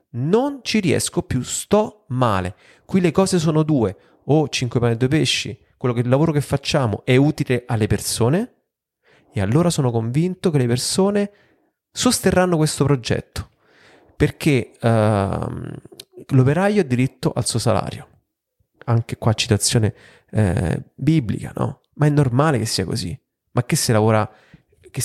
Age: 30-49